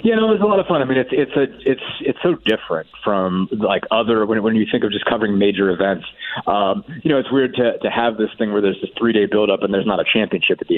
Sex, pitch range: male, 95-115 Hz